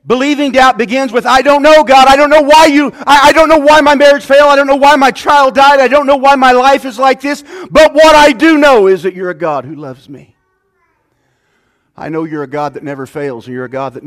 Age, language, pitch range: 40-59, English, 200-290 Hz